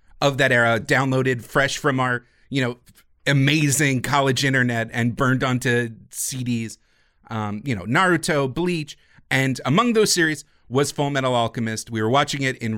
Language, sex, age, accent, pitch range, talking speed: English, male, 30-49, American, 120-155 Hz, 160 wpm